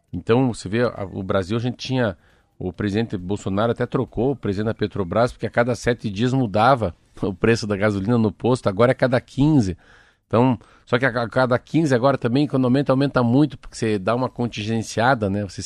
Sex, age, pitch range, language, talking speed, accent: male, 50-69, 100-120 Hz, Portuguese, 205 wpm, Brazilian